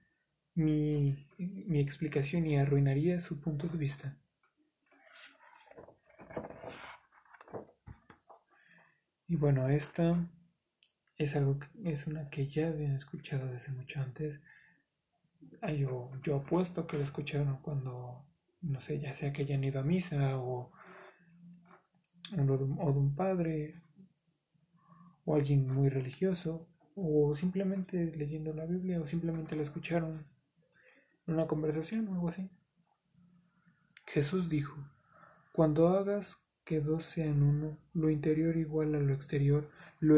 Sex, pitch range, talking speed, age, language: male, 140-170 Hz, 115 wpm, 30-49, Spanish